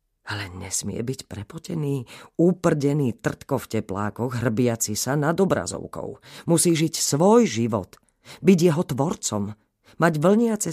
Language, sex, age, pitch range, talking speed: Slovak, female, 40-59, 105-135 Hz, 115 wpm